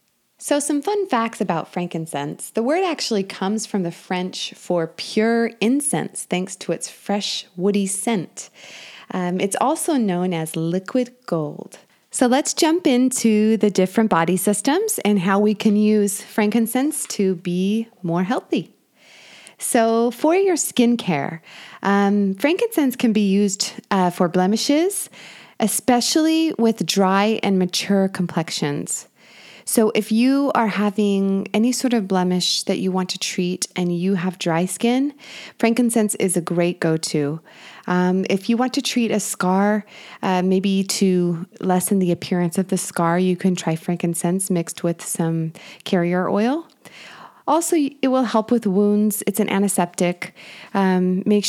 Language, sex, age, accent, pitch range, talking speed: English, female, 20-39, American, 185-235 Hz, 145 wpm